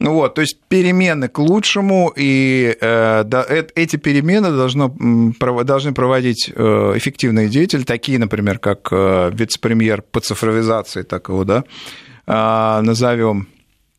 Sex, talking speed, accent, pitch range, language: male, 100 wpm, native, 110-135 Hz, Russian